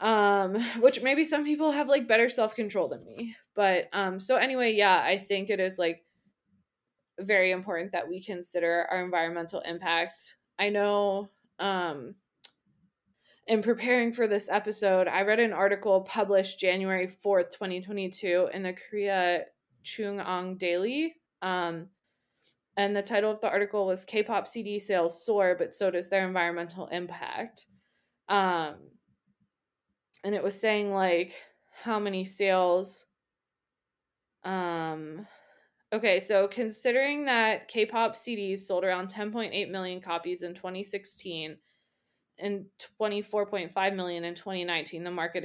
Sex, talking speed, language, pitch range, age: female, 130 wpm, English, 180-215 Hz, 20-39